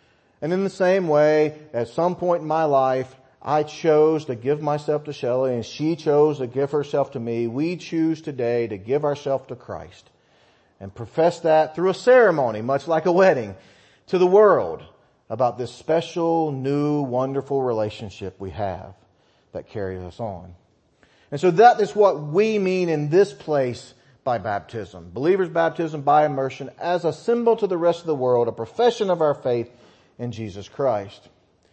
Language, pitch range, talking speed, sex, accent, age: English, 120-160 Hz, 175 wpm, male, American, 40-59